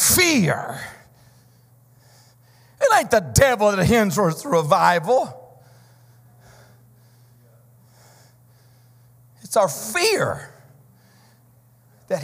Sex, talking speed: male, 65 wpm